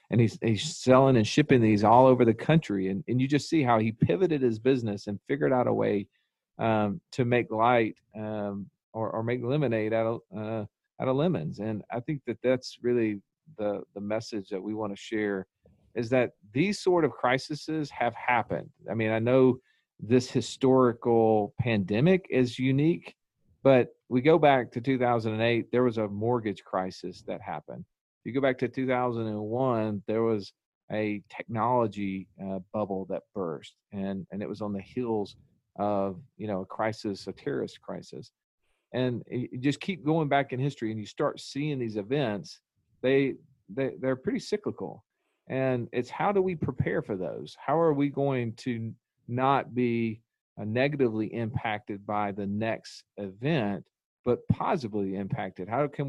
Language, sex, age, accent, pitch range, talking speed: English, male, 40-59, American, 105-130 Hz, 170 wpm